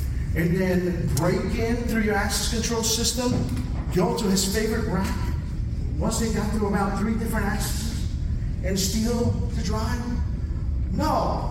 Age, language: 40-59, English